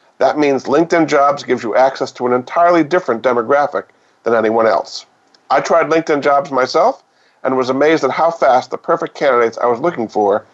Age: 50-69